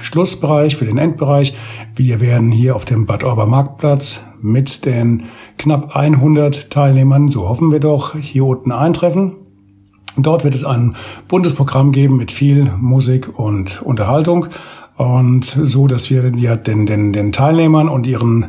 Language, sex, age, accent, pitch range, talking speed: German, male, 60-79, German, 115-145 Hz, 150 wpm